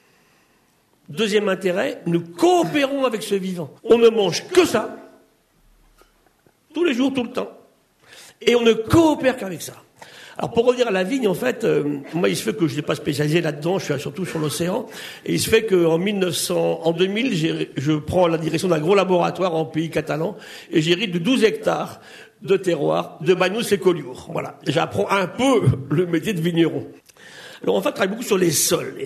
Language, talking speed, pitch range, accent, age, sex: French, 195 wpm, 160-225 Hz, French, 50-69, male